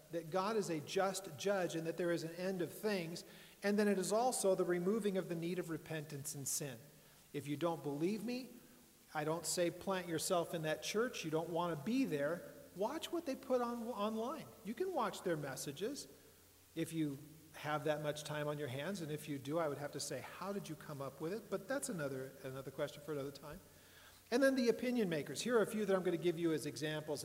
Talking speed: 235 wpm